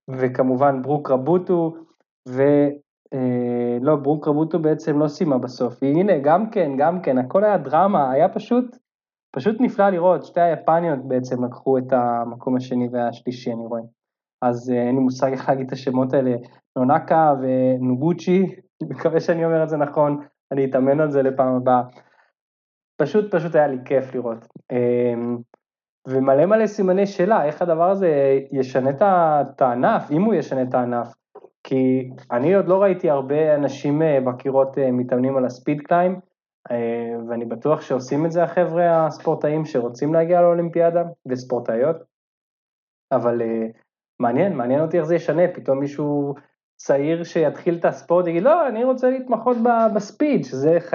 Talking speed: 145 wpm